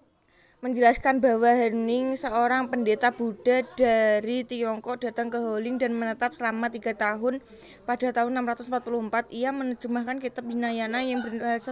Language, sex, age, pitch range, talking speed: Indonesian, female, 20-39, 235-260 Hz, 130 wpm